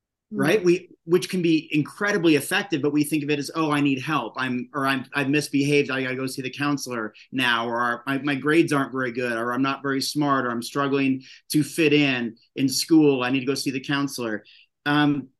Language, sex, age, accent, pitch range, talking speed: English, male, 30-49, American, 125-160 Hz, 220 wpm